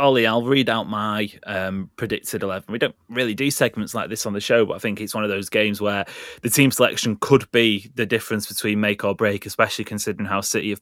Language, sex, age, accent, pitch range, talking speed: English, male, 20-39, British, 105-125 Hz, 240 wpm